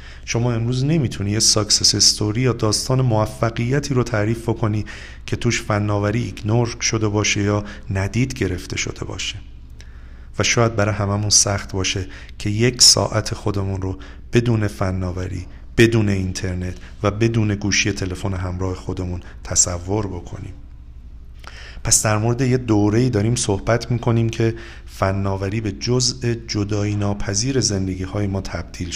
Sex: male